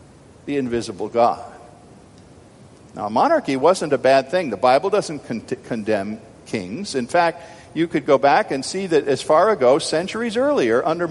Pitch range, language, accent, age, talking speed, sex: 135-195 Hz, English, American, 50-69, 155 wpm, male